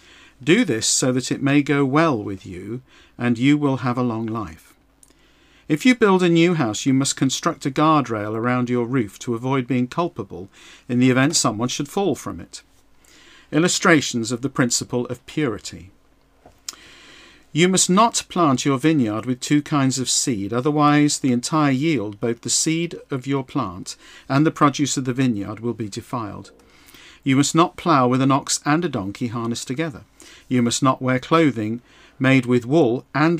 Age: 50-69